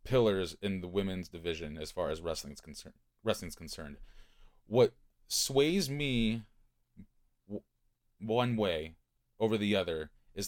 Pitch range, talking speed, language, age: 85-120 Hz, 130 wpm, English, 30-49